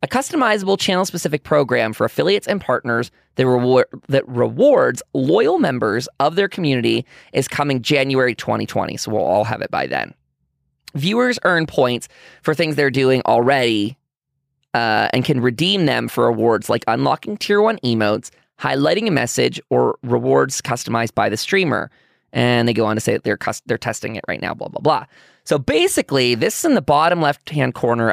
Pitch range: 120-160 Hz